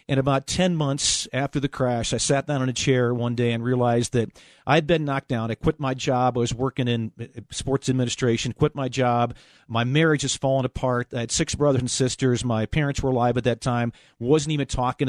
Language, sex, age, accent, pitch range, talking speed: English, male, 50-69, American, 120-145 Hz, 225 wpm